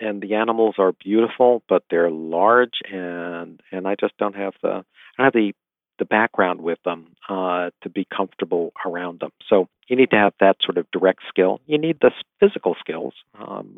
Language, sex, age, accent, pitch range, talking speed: English, male, 50-69, American, 95-110 Hz, 195 wpm